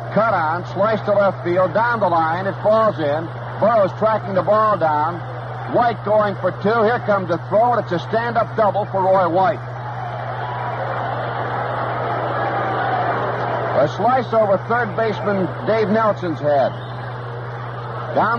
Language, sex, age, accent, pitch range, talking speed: English, male, 60-79, American, 120-180 Hz, 140 wpm